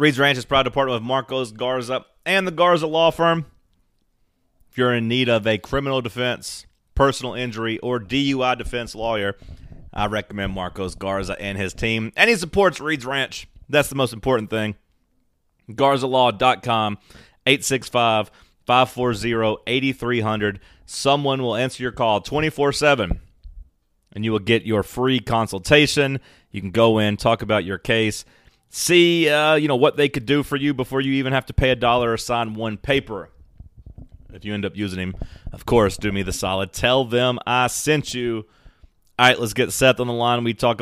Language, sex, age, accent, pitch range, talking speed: English, male, 30-49, American, 105-130 Hz, 170 wpm